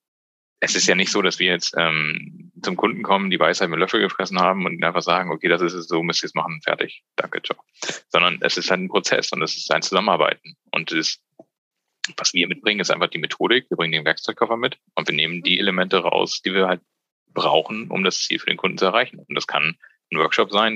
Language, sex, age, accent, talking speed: German, male, 30-49, German, 245 wpm